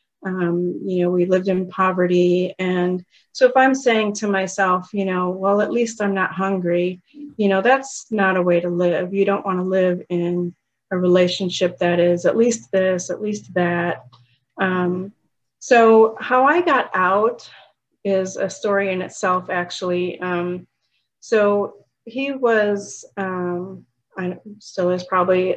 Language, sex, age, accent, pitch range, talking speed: English, female, 30-49, American, 180-205 Hz, 155 wpm